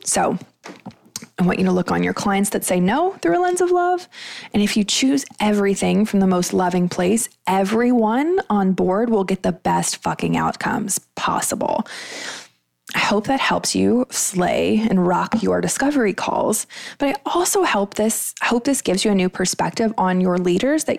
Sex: female